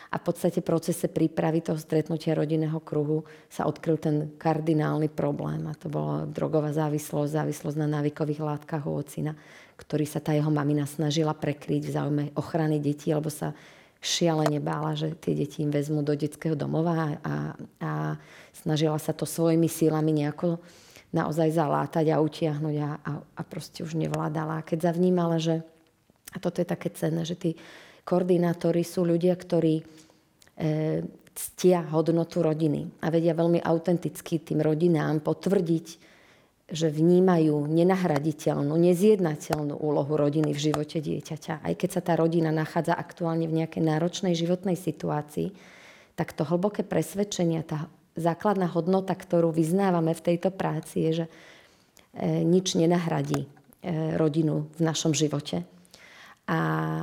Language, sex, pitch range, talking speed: Slovak, female, 150-170 Hz, 140 wpm